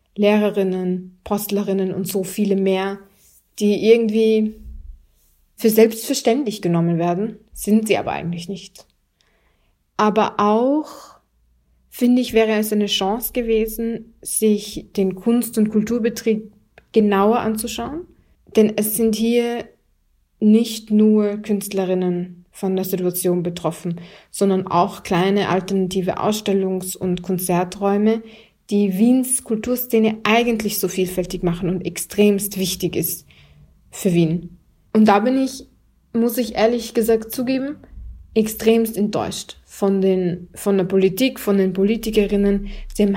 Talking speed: 115 wpm